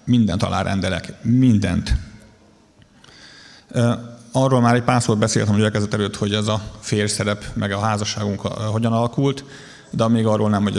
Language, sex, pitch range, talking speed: Hungarian, male, 105-125 Hz, 145 wpm